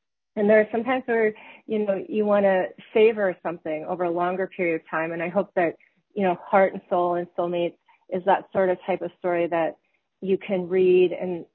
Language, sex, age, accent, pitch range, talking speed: English, female, 30-49, American, 170-195 Hz, 220 wpm